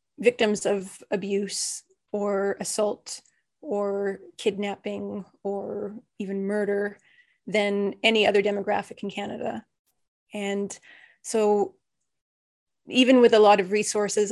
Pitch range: 200-220 Hz